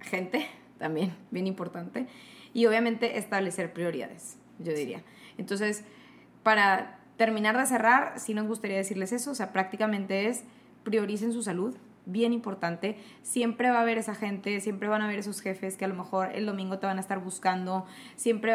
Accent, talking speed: Mexican, 170 wpm